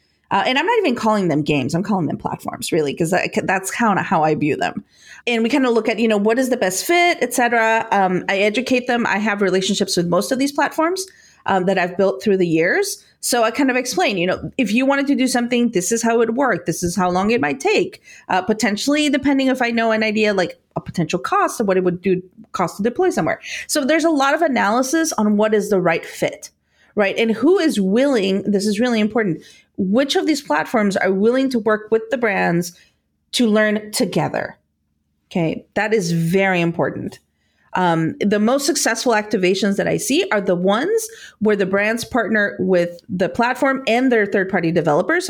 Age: 30-49